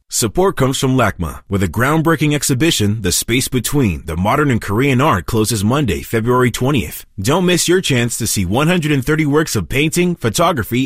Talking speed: 170 wpm